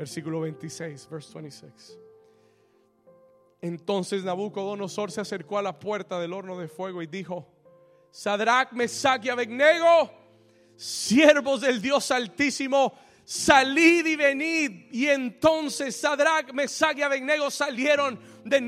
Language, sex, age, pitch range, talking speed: Spanish, male, 30-49, 240-310 Hz, 115 wpm